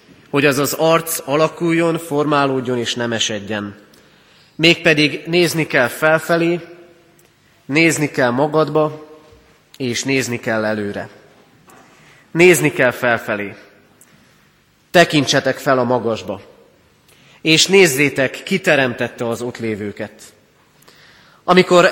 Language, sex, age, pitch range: Hungarian, male, 30-49, 125-160 Hz